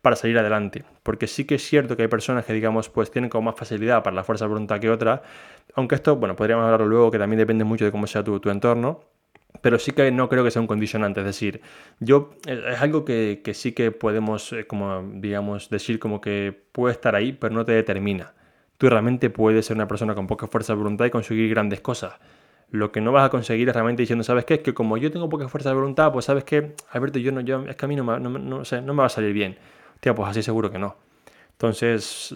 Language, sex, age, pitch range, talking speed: Spanish, male, 20-39, 110-135 Hz, 255 wpm